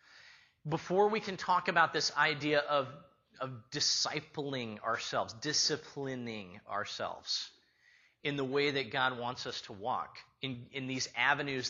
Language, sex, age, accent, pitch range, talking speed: English, male, 30-49, American, 110-150 Hz, 135 wpm